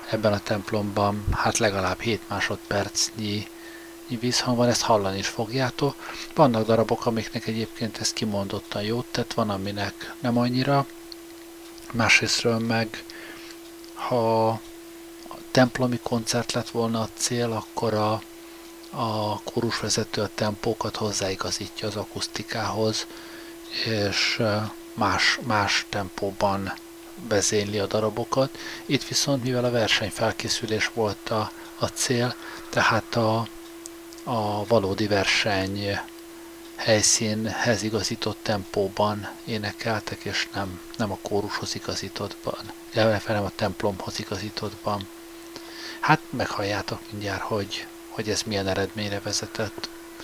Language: Hungarian